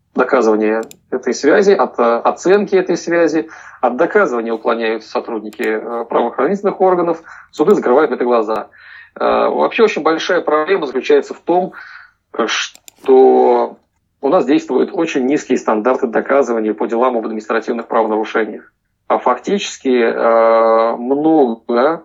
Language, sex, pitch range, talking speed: Russian, male, 115-180 Hz, 110 wpm